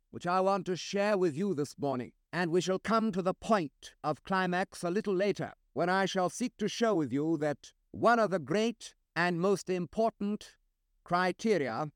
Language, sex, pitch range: English, male, 160-200 Hz